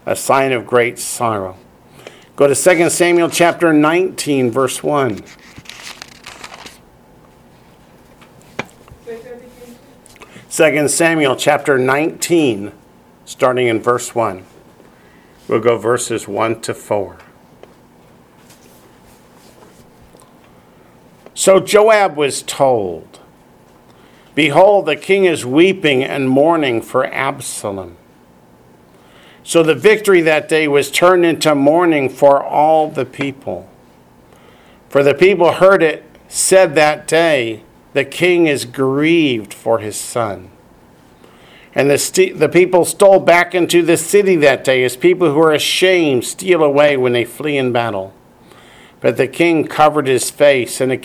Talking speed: 115 wpm